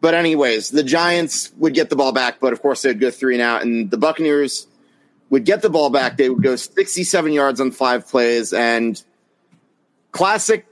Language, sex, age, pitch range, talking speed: English, male, 30-49, 120-165 Hz, 195 wpm